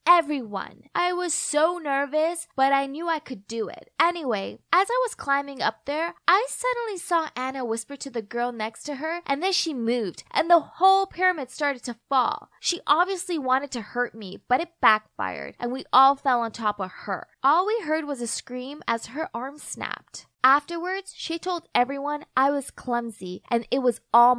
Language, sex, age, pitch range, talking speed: English, female, 10-29, 230-335 Hz, 195 wpm